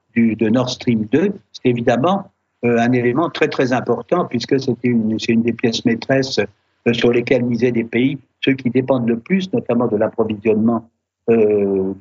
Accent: French